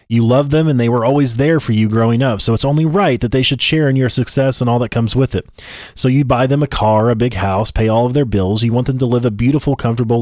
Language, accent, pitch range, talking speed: English, American, 115-145 Hz, 300 wpm